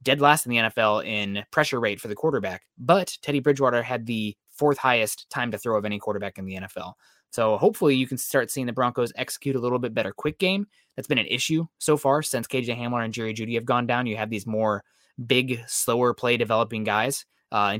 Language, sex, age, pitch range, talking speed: English, male, 20-39, 110-145 Hz, 225 wpm